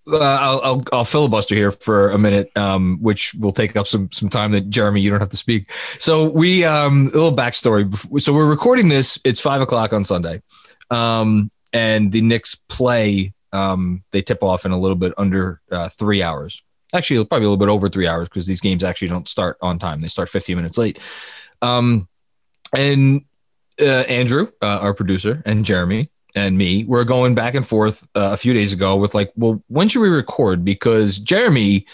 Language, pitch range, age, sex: English, 100-135 Hz, 20-39, male